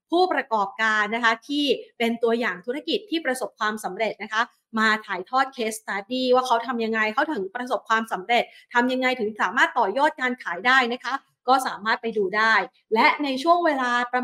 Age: 30-49